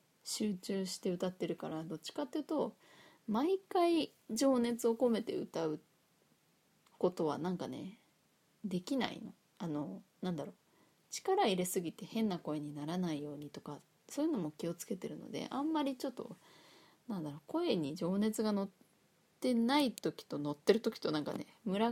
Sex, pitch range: female, 175-280 Hz